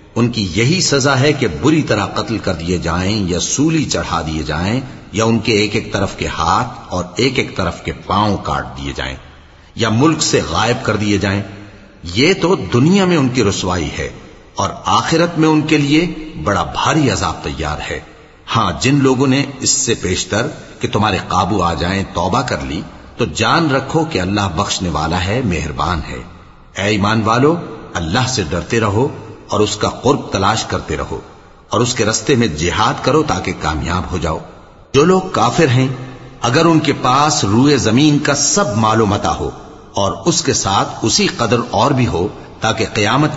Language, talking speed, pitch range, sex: English, 160 wpm, 95-135 Hz, male